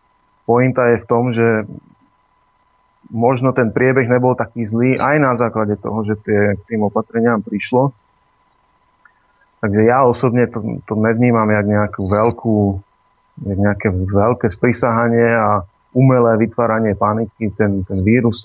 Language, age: Slovak, 30-49